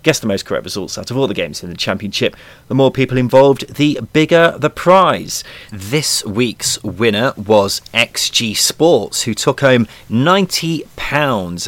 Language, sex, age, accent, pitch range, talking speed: English, male, 30-49, British, 100-130 Hz, 160 wpm